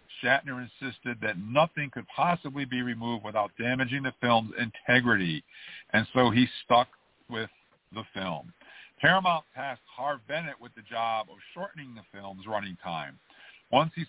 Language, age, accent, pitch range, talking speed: English, 50-69, American, 115-140 Hz, 150 wpm